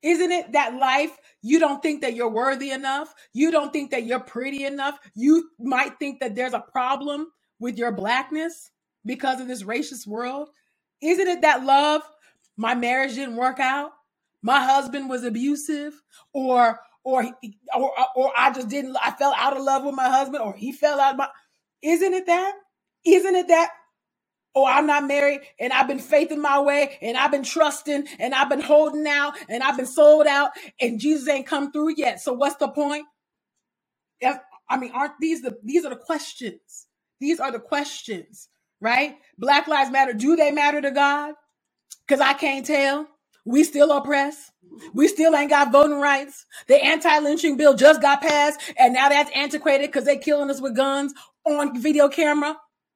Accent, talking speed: American, 185 wpm